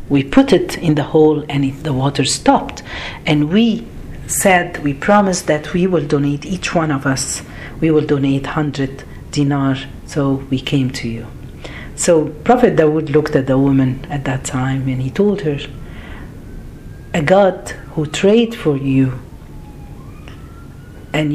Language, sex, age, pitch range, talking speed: Arabic, female, 50-69, 135-180 Hz, 150 wpm